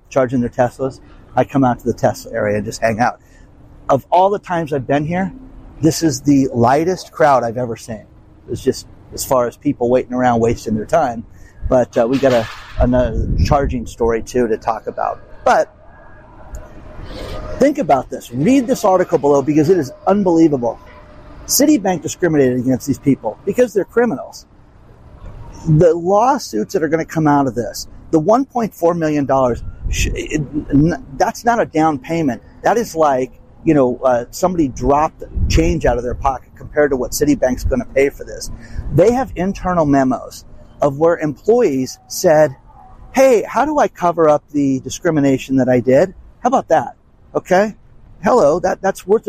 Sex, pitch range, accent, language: male, 120-170 Hz, American, English